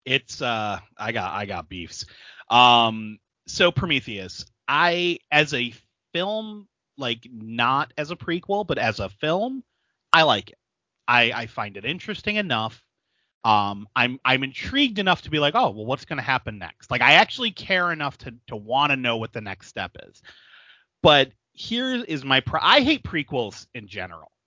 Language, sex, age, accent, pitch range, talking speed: English, male, 30-49, American, 105-145 Hz, 175 wpm